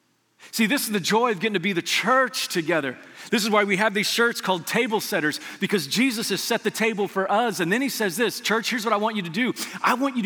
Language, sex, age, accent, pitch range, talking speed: English, male, 30-49, American, 190-240 Hz, 270 wpm